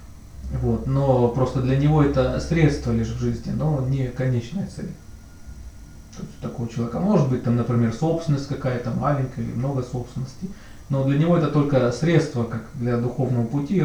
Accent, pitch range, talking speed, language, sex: native, 115-140 Hz, 175 wpm, Russian, male